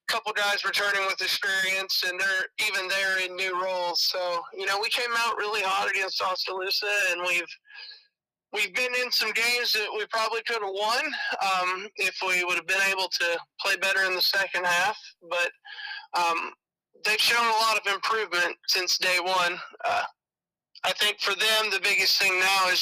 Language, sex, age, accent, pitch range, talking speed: English, male, 20-39, American, 175-215 Hz, 185 wpm